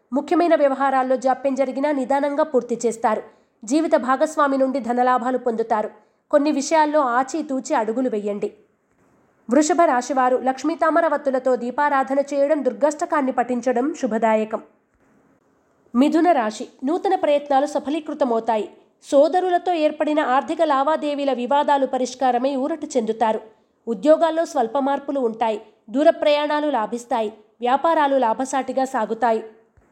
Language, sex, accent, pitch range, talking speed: Telugu, female, native, 245-300 Hz, 95 wpm